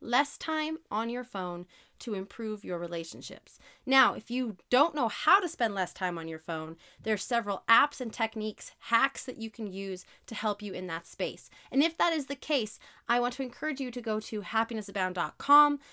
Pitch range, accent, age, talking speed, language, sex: 215-285 Hz, American, 30-49, 205 wpm, English, female